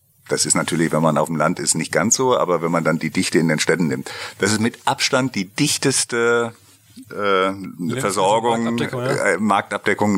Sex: male